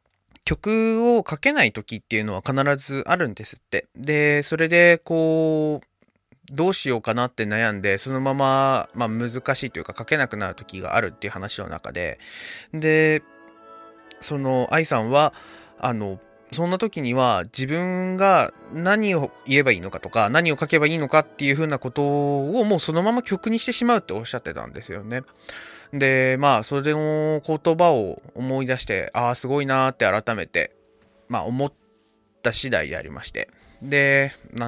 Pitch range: 115-160 Hz